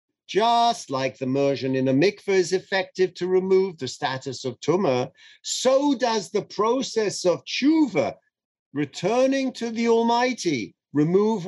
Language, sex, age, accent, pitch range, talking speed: English, male, 50-69, British, 140-210 Hz, 135 wpm